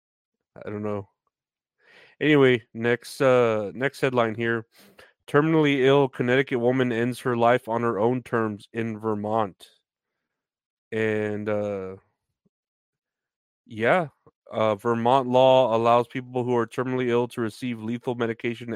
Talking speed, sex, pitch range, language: 120 wpm, male, 110-130 Hz, English